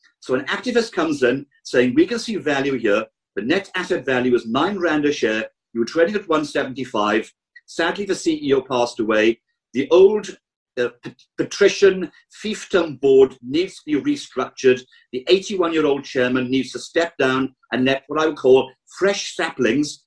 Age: 50-69